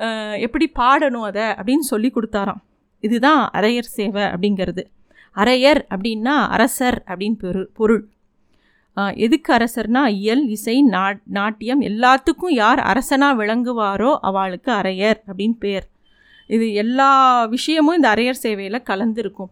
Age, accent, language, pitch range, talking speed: 30-49, native, Tamil, 210-270 Hz, 115 wpm